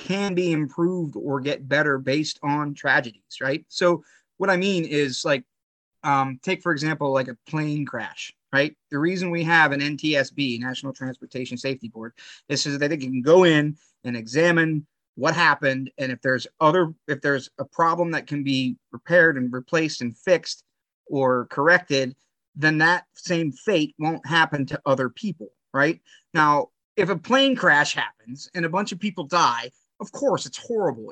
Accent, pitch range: American, 135-170 Hz